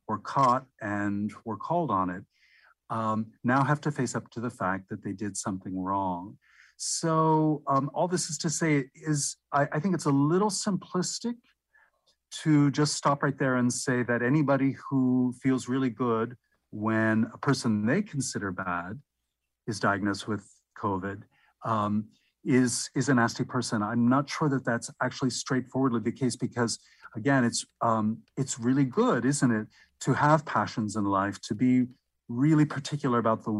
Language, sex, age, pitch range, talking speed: English, male, 50-69, 110-135 Hz, 165 wpm